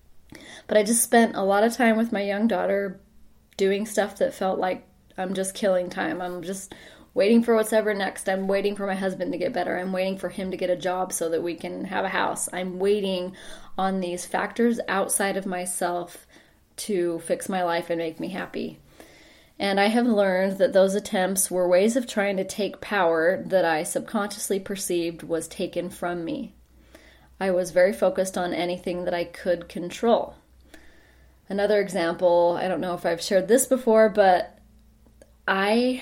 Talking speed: 185 wpm